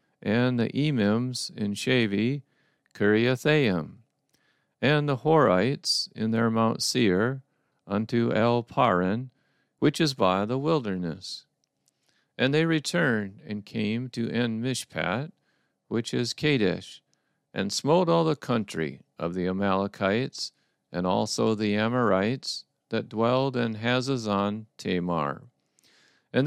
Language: English